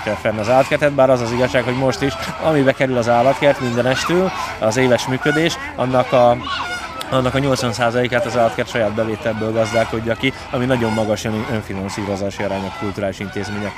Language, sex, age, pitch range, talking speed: Hungarian, male, 20-39, 110-130 Hz, 170 wpm